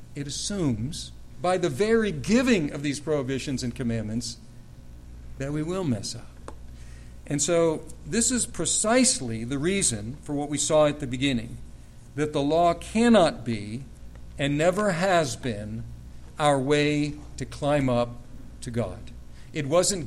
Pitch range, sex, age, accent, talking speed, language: 115-160 Hz, male, 50-69, American, 145 wpm, English